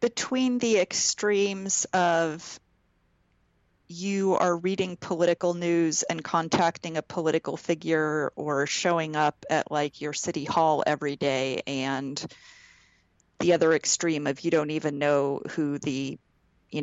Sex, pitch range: female, 150-195 Hz